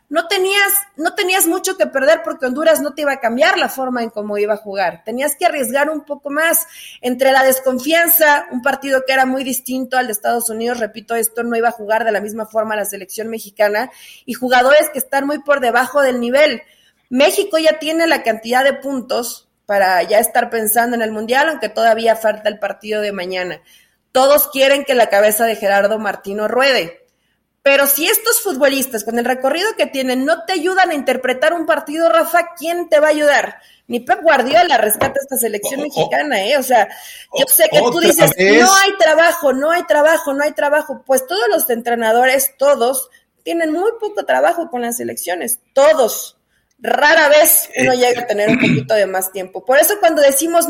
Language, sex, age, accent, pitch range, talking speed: Spanish, female, 30-49, Mexican, 235-320 Hz, 200 wpm